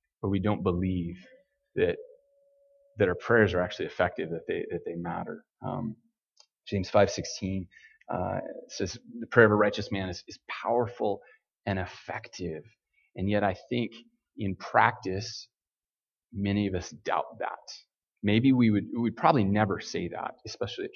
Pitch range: 100-140 Hz